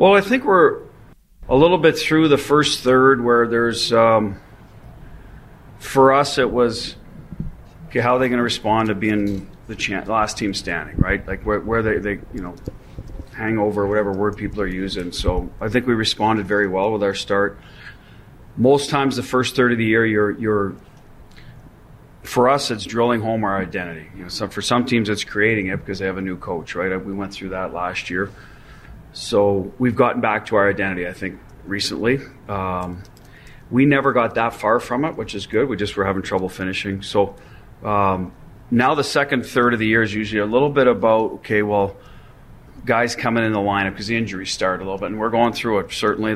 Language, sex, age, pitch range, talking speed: English, male, 40-59, 100-120 Hz, 205 wpm